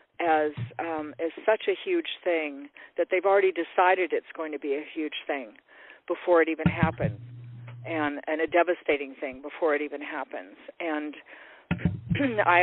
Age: 50-69